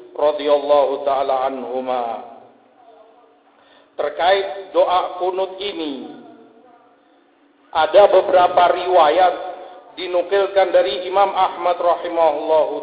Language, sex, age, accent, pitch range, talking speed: Indonesian, male, 50-69, native, 155-190 Hz, 70 wpm